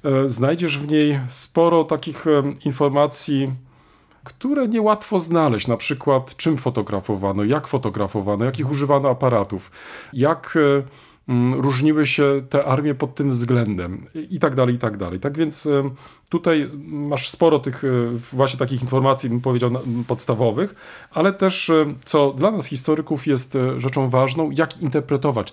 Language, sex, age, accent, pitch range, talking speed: Polish, male, 40-59, native, 125-150 Hz, 130 wpm